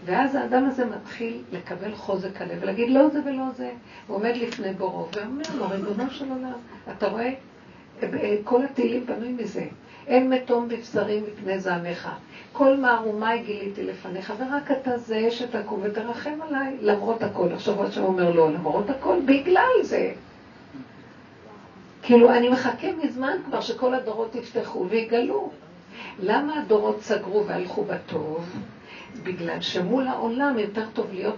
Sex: female